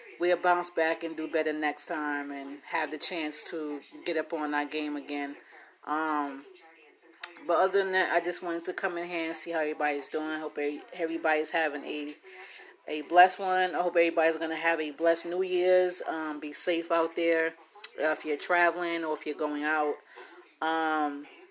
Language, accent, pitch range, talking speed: English, American, 155-175 Hz, 195 wpm